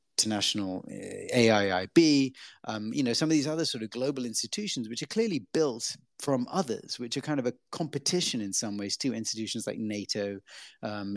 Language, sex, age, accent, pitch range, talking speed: English, male, 30-49, British, 105-125 Hz, 175 wpm